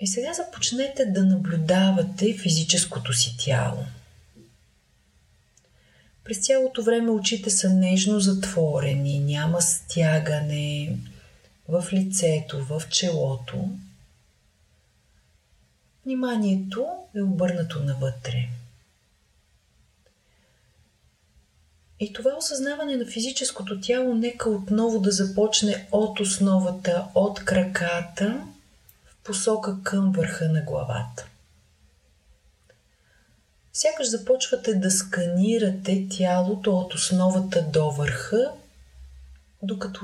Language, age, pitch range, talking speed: Bulgarian, 30-49, 130-195 Hz, 80 wpm